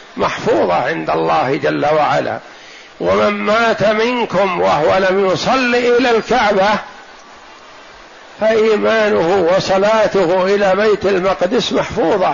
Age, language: 60-79, Arabic